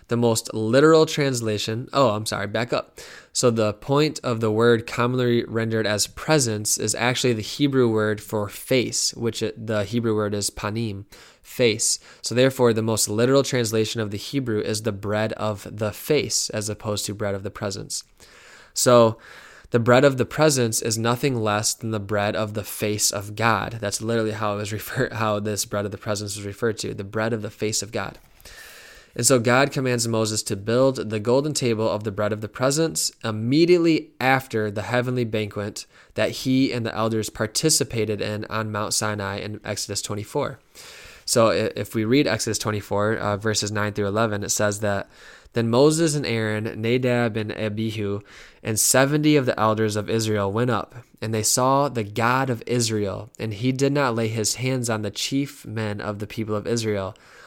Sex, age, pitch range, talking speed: male, 20-39, 105-120 Hz, 190 wpm